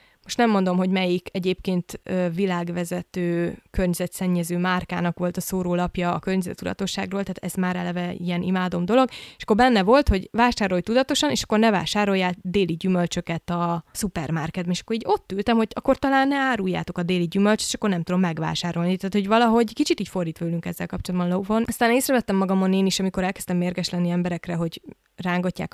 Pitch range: 175-210 Hz